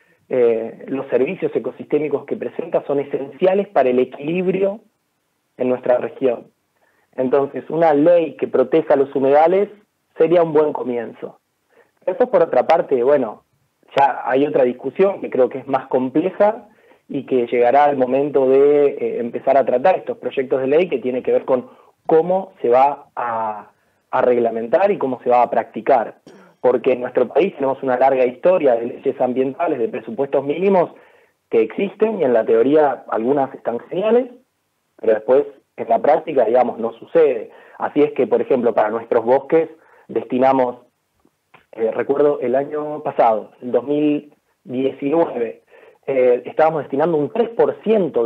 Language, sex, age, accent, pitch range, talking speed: Spanish, male, 30-49, Argentinian, 130-210 Hz, 155 wpm